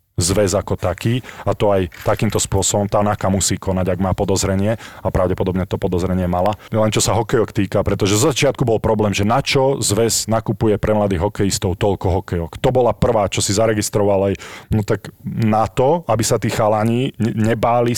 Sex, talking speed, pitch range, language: male, 180 wpm, 100-120 Hz, Slovak